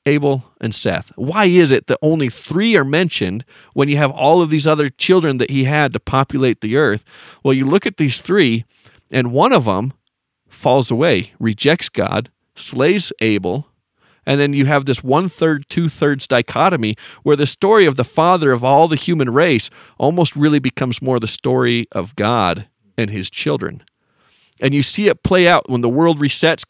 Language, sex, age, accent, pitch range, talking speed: English, male, 40-59, American, 120-155 Hz, 185 wpm